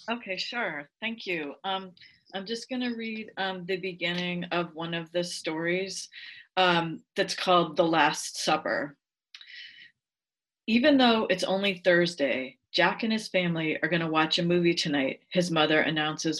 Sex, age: female, 40-59